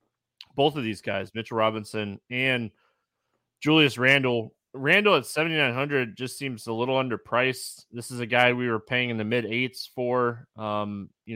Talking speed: 175 wpm